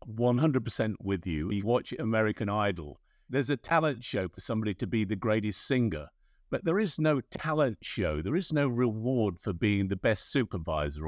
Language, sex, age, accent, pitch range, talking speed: English, male, 50-69, British, 95-130 Hz, 175 wpm